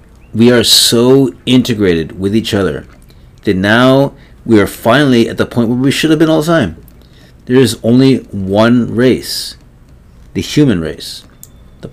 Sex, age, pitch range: male, 30-49, 90-120 Hz